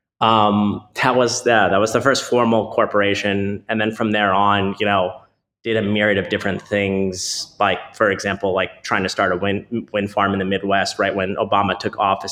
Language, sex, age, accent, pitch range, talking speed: English, male, 20-39, American, 95-115 Hz, 205 wpm